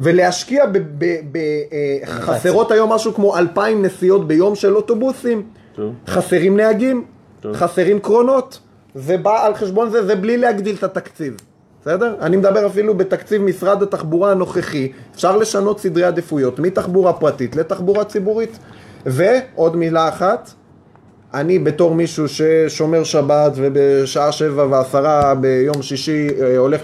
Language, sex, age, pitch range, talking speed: Hebrew, male, 30-49, 125-180 Hz, 120 wpm